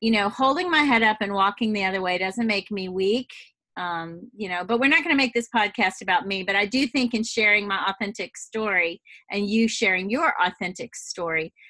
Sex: female